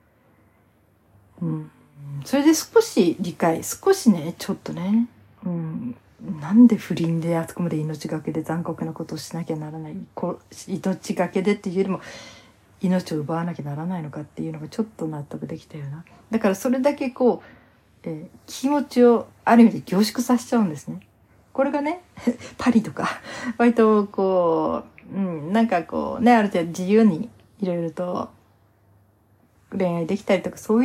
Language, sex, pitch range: Japanese, female, 155-230 Hz